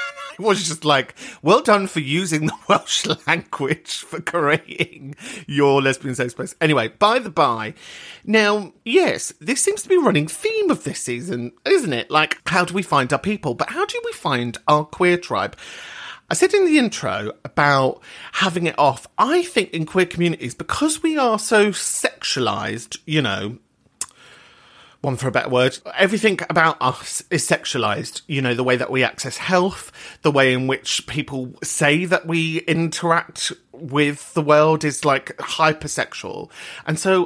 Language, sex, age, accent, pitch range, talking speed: English, male, 40-59, British, 135-205 Hz, 170 wpm